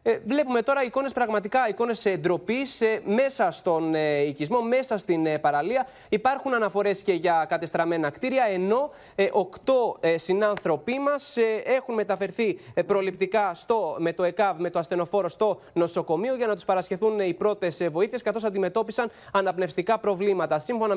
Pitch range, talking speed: 180-225 Hz, 130 wpm